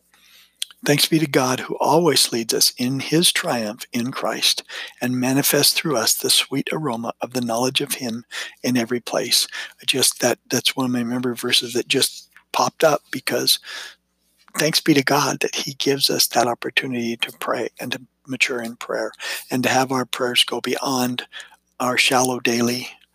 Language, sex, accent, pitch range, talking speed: English, male, American, 120-145 Hz, 175 wpm